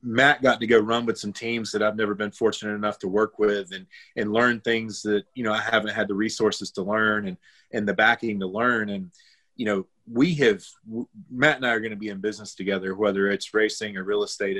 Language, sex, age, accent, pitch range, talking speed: English, male, 30-49, American, 105-120 Hz, 240 wpm